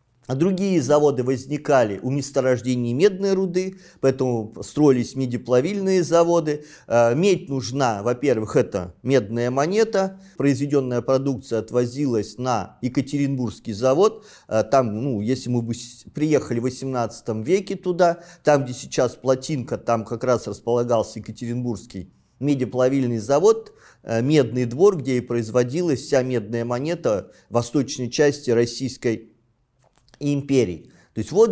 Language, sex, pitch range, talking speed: Russian, male, 120-160 Hz, 115 wpm